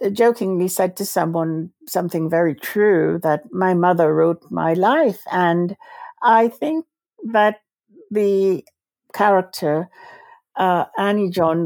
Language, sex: English, female